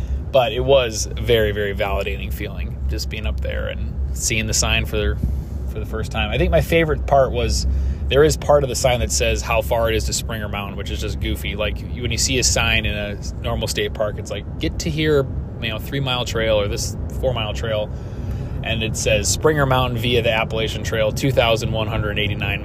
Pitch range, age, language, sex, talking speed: 85-120 Hz, 20-39, English, male, 210 wpm